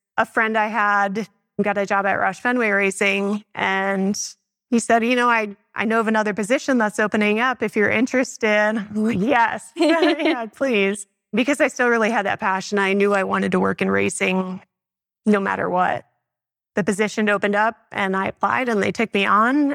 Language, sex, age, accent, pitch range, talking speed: English, female, 30-49, American, 200-225 Hz, 190 wpm